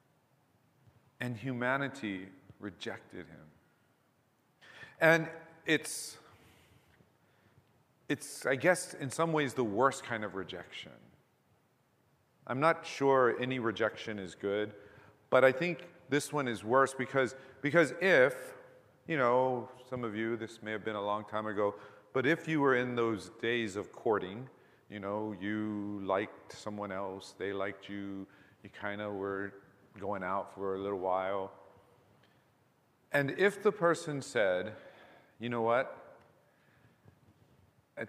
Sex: male